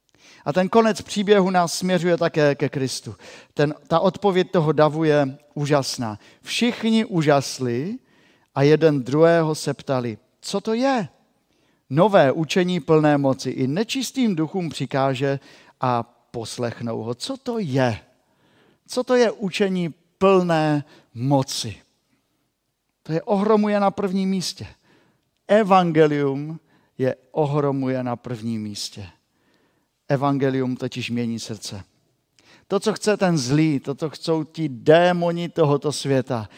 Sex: male